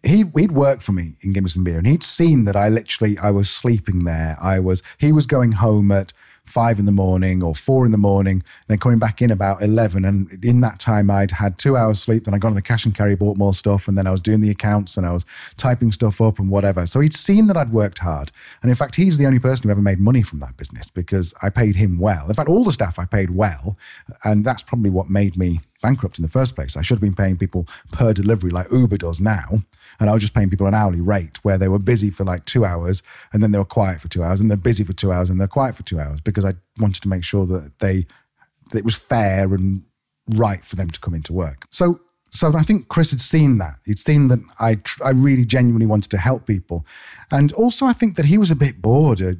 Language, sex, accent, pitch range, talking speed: English, male, British, 95-120 Hz, 265 wpm